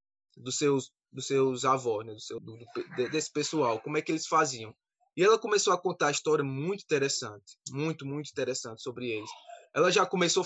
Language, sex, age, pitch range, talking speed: Portuguese, male, 20-39, 135-195 Hz, 195 wpm